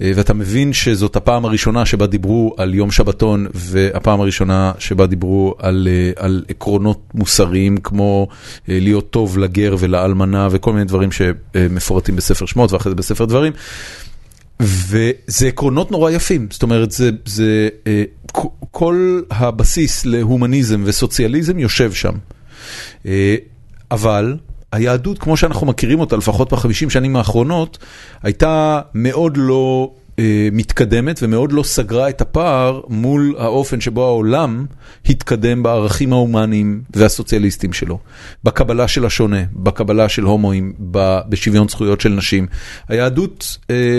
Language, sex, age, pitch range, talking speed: Hebrew, male, 40-59, 100-125 Hz, 120 wpm